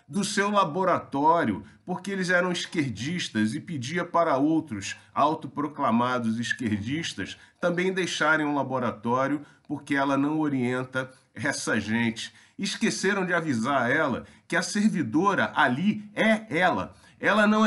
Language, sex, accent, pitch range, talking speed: Portuguese, male, Brazilian, 125-195 Hz, 125 wpm